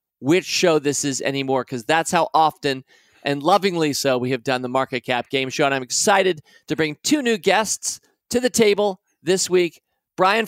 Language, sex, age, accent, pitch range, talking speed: English, male, 40-59, American, 150-200 Hz, 195 wpm